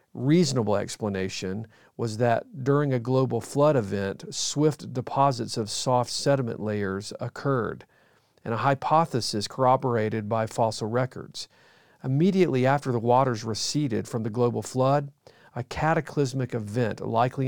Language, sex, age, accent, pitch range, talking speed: English, male, 40-59, American, 115-135 Hz, 125 wpm